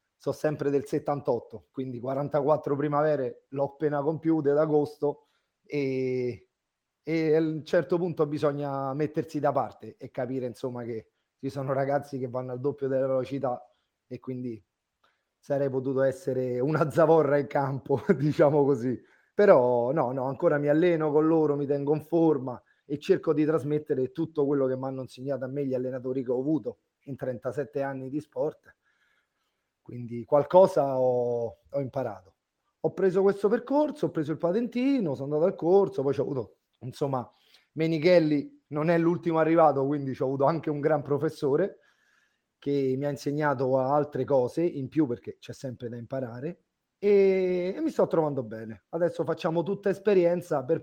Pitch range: 130-160 Hz